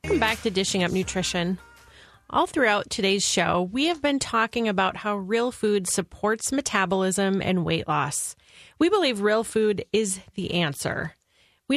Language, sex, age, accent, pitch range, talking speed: English, female, 30-49, American, 185-245 Hz, 160 wpm